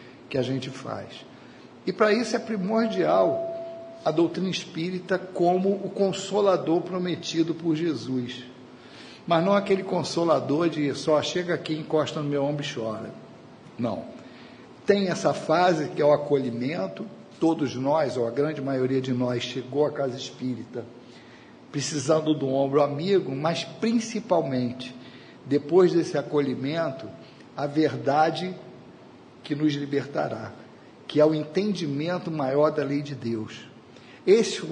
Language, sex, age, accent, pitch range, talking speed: Portuguese, male, 50-69, Brazilian, 135-180 Hz, 135 wpm